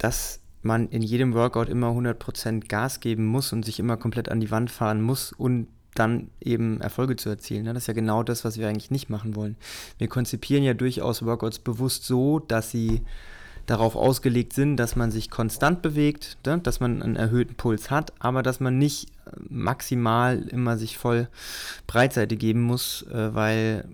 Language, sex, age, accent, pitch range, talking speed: German, male, 20-39, German, 110-125 Hz, 180 wpm